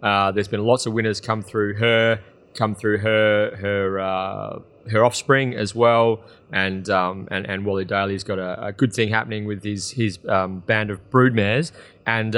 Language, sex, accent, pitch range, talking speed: English, male, Australian, 105-120 Hz, 185 wpm